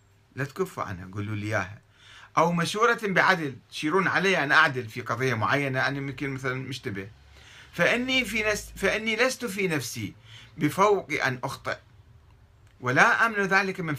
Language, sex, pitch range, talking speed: Arabic, male, 105-155 Hz, 135 wpm